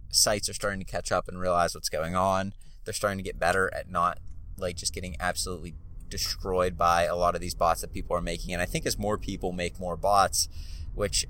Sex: male